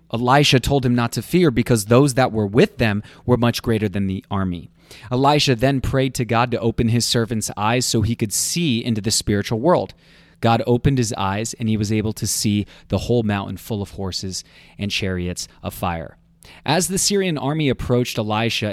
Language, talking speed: English, 200 wpm